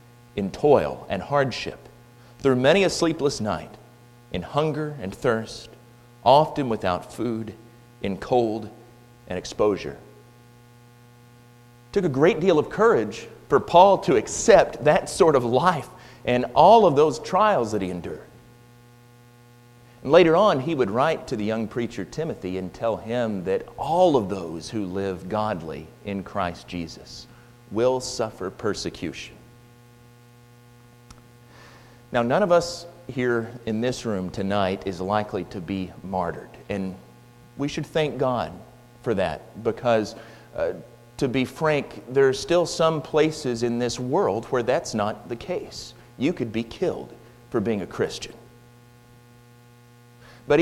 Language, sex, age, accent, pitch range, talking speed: English, male, 40-59, American, 110-120 Hz, 140 wpm